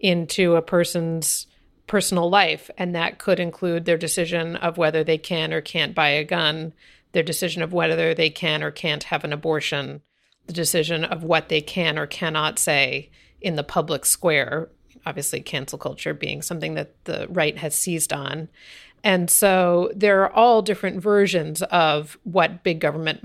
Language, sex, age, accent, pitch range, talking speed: English, female, 40-59, American, 160-190 Hz, 170 wpm